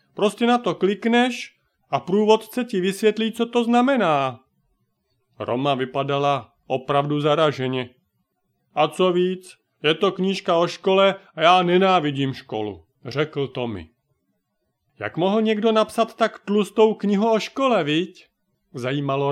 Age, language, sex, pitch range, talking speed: 40-59, Czech, male, 140-205 Hz, 125 wpm